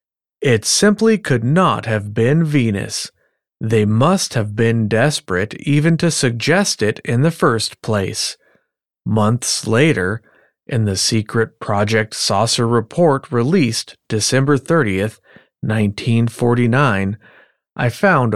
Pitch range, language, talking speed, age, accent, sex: 105-150 Hz, English, 110 wpm, 40-59, American, male